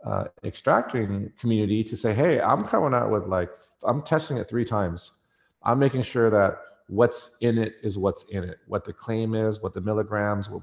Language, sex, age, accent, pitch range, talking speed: English, male, 40-59, American, 100-115 Hz, 200 wpm